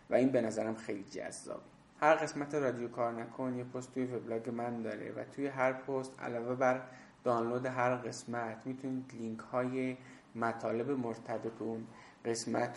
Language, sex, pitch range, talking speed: Persian, male, 115-130 Hz, 140 wpm